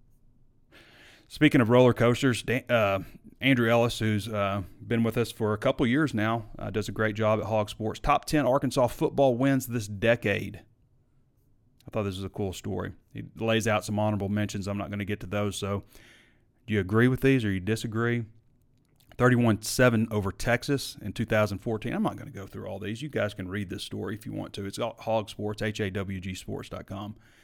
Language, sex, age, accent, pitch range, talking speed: English, male, 30-49, American, 105-125 Hz, 190 wpm